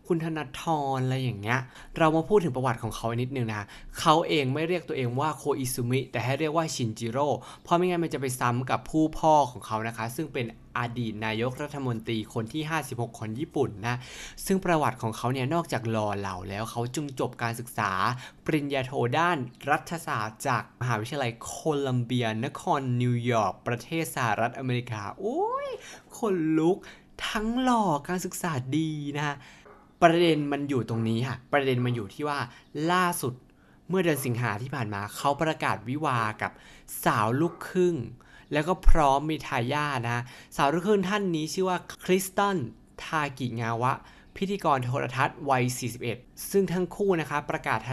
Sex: male